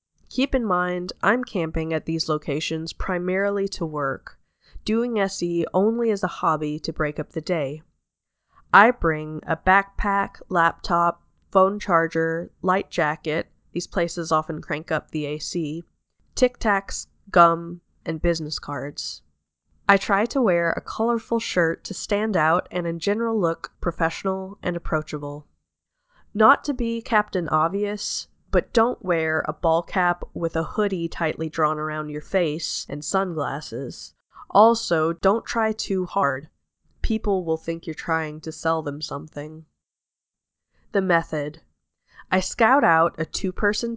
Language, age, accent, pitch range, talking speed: English, 20-39, American, 155-200 Hz, 140 wpm